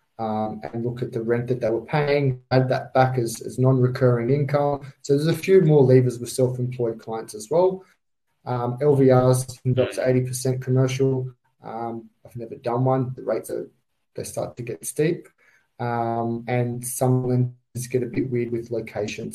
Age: 20-39